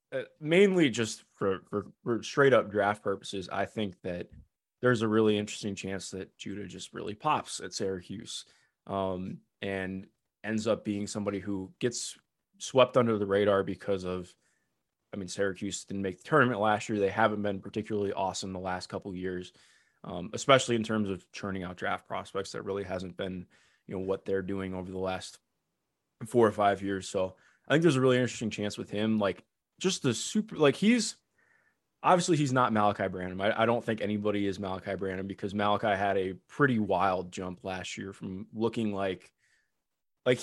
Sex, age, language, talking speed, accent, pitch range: male, 20-39, English, 185 wpm, American, 95-120 Hz